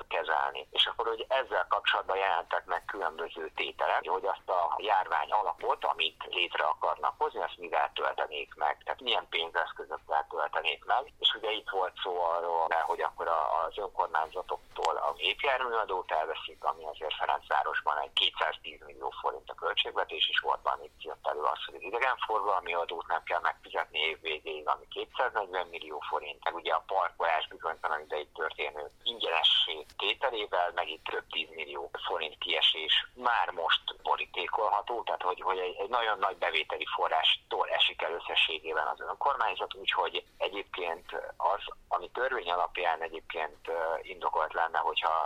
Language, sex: Hungarian, male